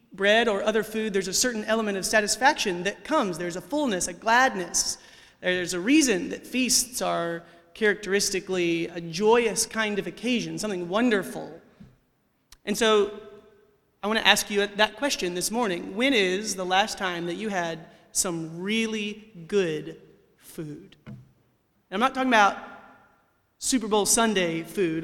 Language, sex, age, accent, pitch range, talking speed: English, male, 30-49, American, 185-230 Hz, 150 wpm